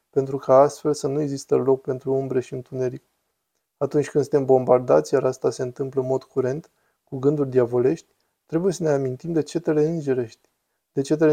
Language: Romanian